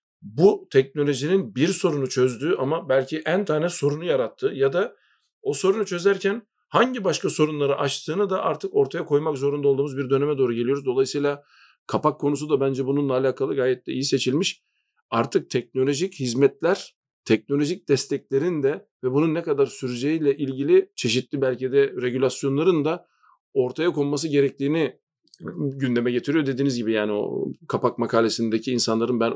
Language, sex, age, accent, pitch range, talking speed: Turkish, male, 50-69, native, 125-150 Hz, 145 wpm